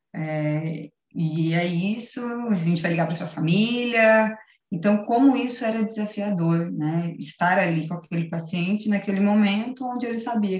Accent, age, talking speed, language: Brazilian, 20-39, 155 wpm, Portuguese